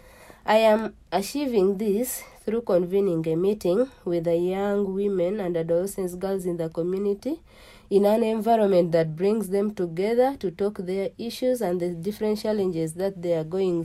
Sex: female